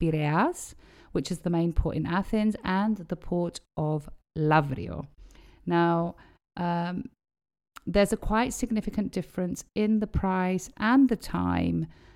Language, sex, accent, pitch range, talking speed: Greek, female, British, 155-190 Hz, 130 wpm